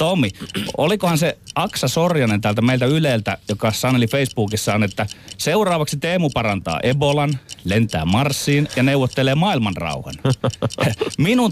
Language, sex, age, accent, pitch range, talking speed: Finnish, male, 30-49, native, 110-165 Hz, 120 wpm